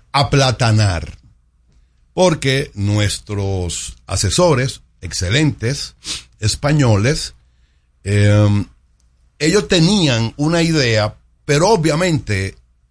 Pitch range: 90-145 Hz